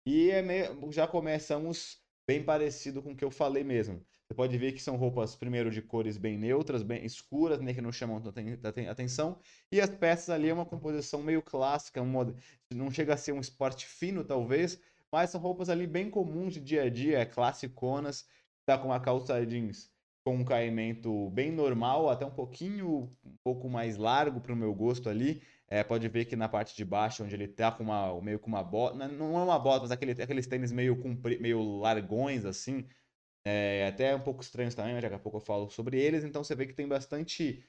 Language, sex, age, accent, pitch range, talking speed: Portuguese, male, 20-39, Brazilian, 115-140 Hz, 215 wpm